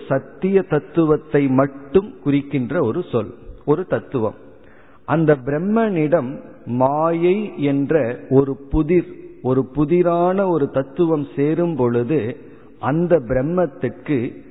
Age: 50-69